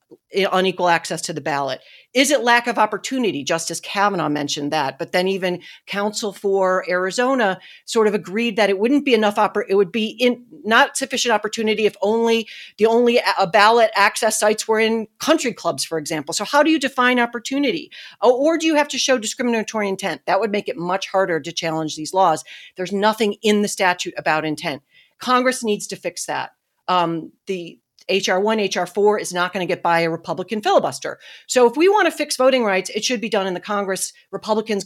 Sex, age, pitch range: female, 40-59, 175-235 Hz